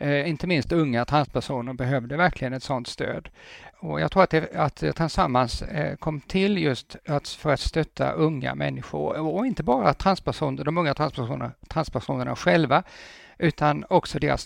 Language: English